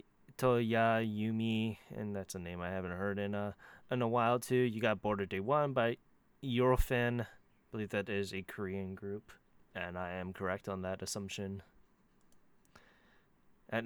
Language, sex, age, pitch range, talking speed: English, male, 20-39, 95-120 Hz, 160 wpm